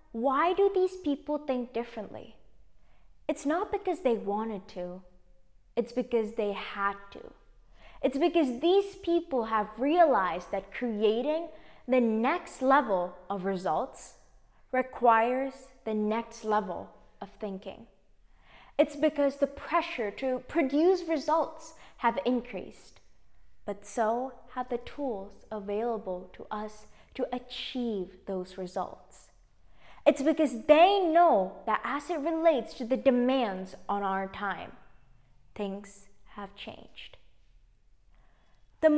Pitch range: 205-290 Hz